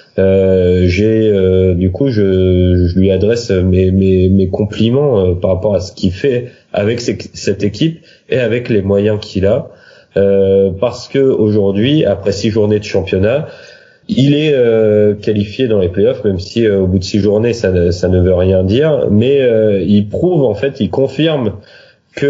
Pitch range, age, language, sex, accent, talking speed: 95-120 Hz, 30-49, French, male, French, 185 wpm